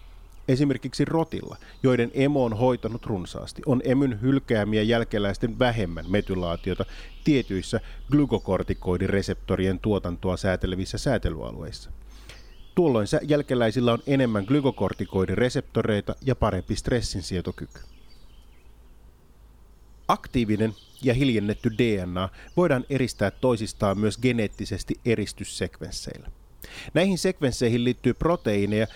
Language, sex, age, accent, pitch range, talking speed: Finnish, male, 30-49, native, 95-130 Hz, 85 wpm